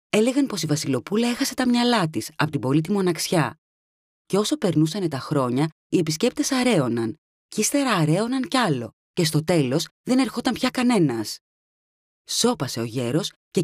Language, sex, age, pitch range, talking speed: Greek, female, 20-39, 135-210 Hz, 160 wpm